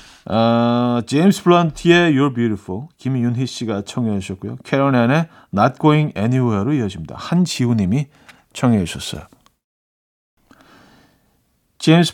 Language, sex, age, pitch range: Korean, male, 40-59, 110-150 Hz